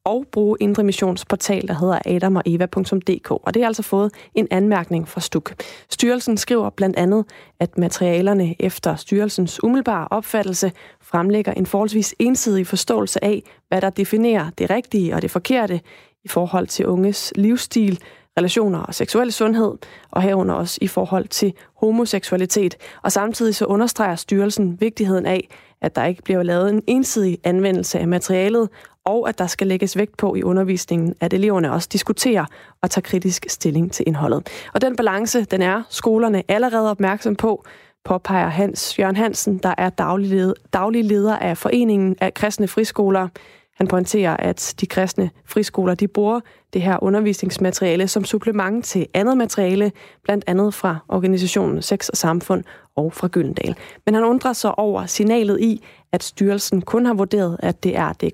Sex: female